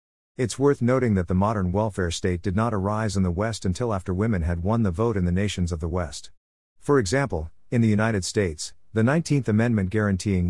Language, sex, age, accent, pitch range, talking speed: English, male, 50-69, American, 90-115 Hz, 210 wpm